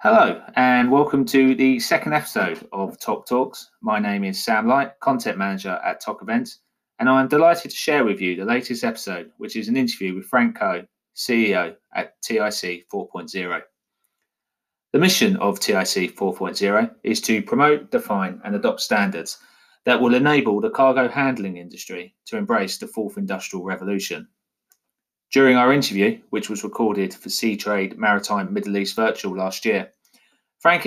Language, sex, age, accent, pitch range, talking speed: English, male, 30-49, British, 100-150 Hz, 160 wpm